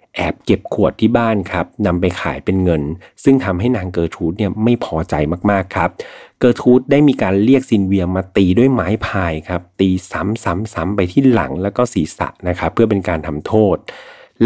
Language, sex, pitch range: Thai, male, 90-110 Hz